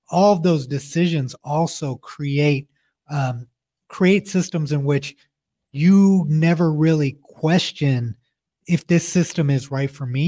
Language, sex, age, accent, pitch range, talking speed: English, male, 30-49, American, 140-165 Hz, 130 wpm